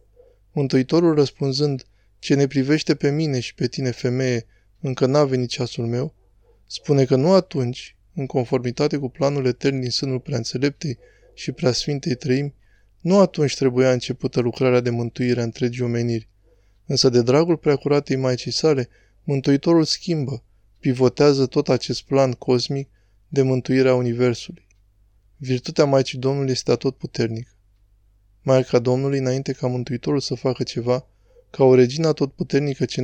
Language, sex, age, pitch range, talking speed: Romanian, male, 20-39, 120-140 Hz, 140 wpm